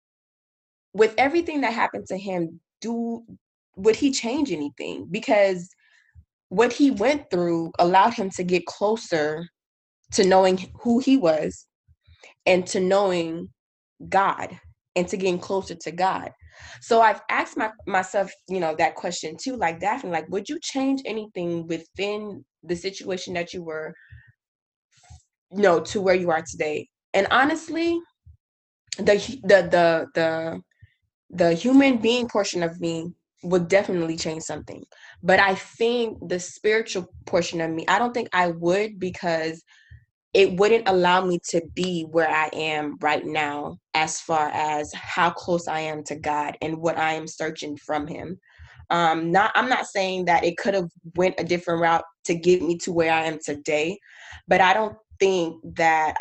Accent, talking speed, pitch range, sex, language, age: American, 160 wpm, 160-200 Hz, female, English, 20-39